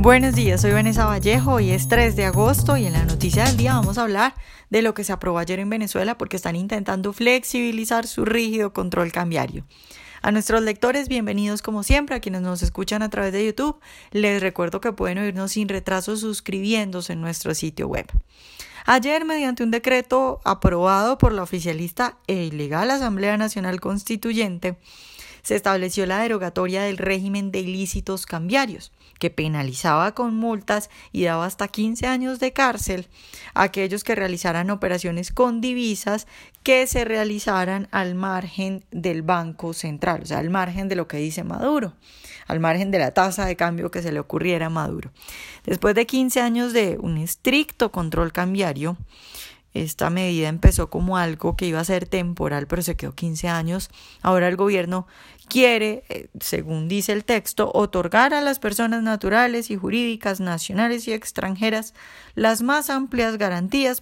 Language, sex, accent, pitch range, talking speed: Spanish, female, Colombian, 180-230 Hz, 165 wpm